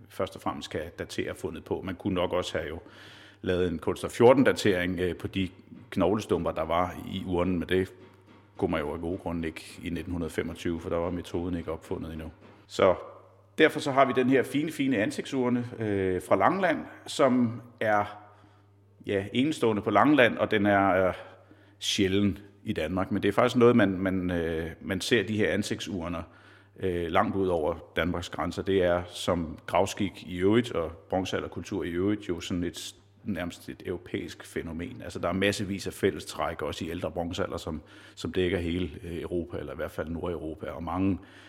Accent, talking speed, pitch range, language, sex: native, 180 wpm, 90-105 Hz, Danish, male